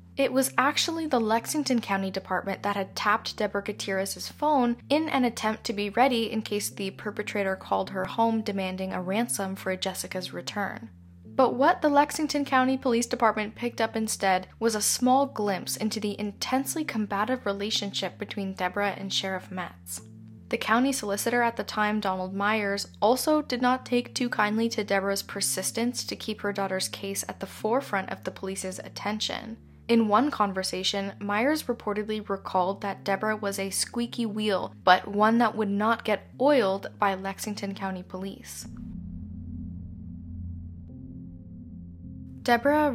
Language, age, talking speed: English, 10-29, 150 wpm